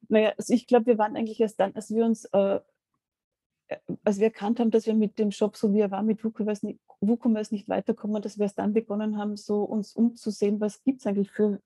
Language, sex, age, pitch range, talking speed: English, female, 30-49, 205-225 Hz, 235 wpm